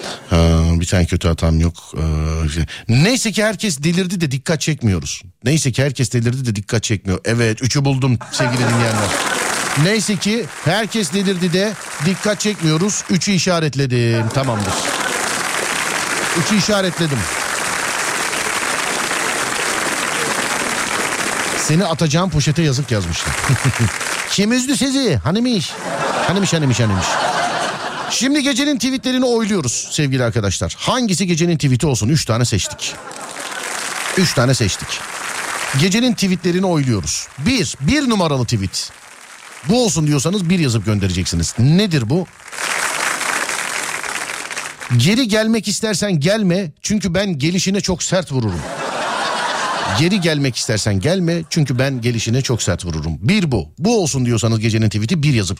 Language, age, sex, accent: Turkish, 50-69, male, native